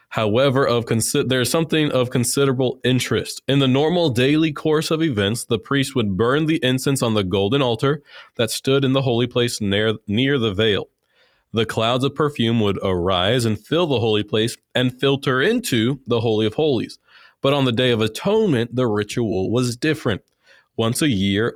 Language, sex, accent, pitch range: English, male, American, 110-140 Hz